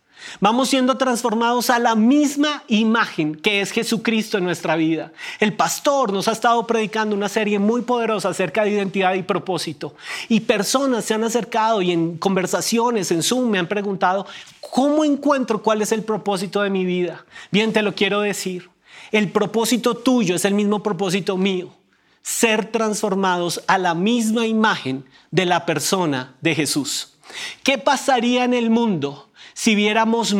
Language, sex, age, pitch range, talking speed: Spanish, male, 30-49, 175-230 Hz, 160 wpm